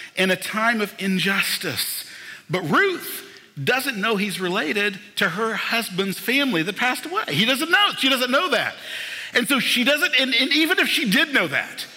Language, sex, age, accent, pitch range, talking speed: English, male, 50-69, American, 155-250 Hz, 185 wpm